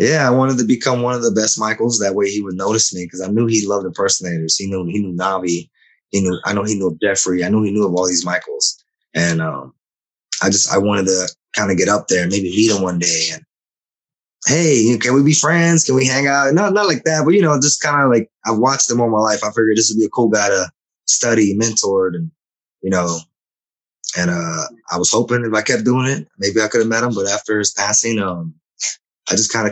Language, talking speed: English, 255 wpm